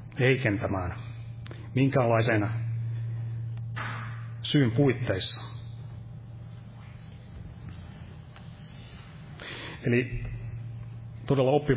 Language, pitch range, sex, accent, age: Finnish, 115-125 Hz, male, native, 30-49